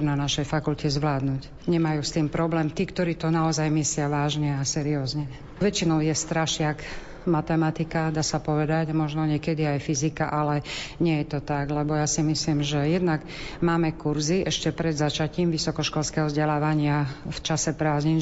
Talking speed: 160 wpm